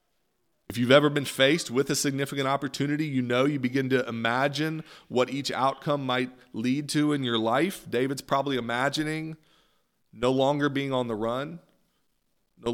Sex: male